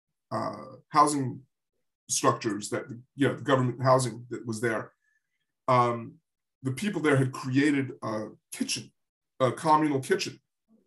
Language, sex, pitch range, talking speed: English, male, 115-135 Hz, 125 wpm